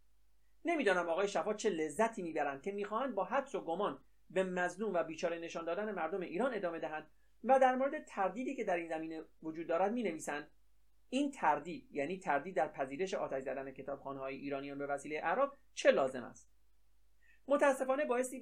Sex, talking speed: male, 165 wpm